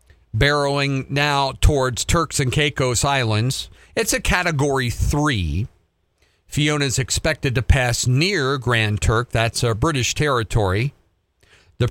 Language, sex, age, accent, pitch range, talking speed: English, male, 50-69, American, 100-130 Hz, 115 wpm